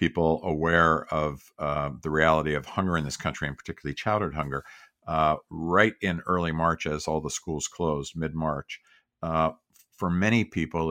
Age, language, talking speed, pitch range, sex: 50-69, English, 165 wpm, 75-80 Hz, male